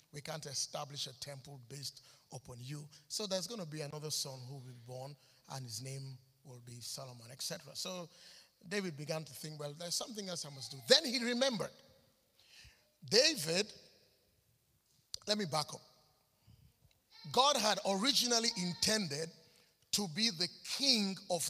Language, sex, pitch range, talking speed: English, male, 155-205 Hz, 155 wpm